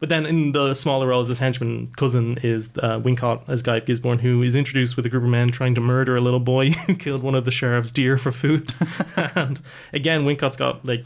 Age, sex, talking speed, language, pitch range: 20-39, male, 240 wpm, English, 120-135 Hz